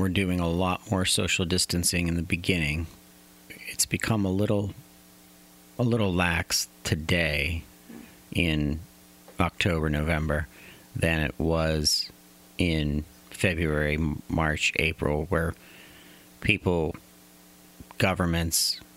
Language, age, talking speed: English, 40-59, 100 wpm